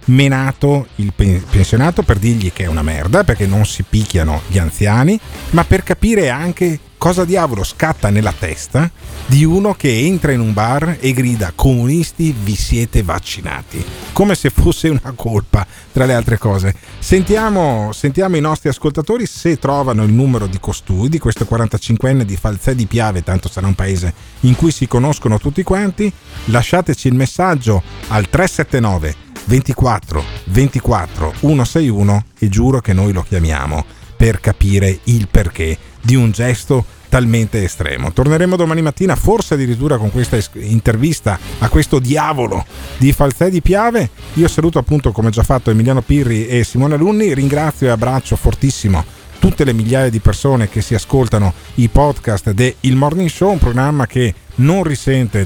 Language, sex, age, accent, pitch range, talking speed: Italian, male, 40-59, native, 105-145 Hz, 155 wpm